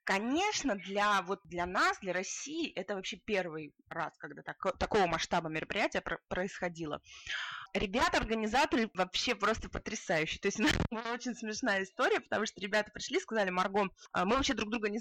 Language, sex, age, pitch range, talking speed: Russian, female, 20-39, 185-245 Hz, 155 wpm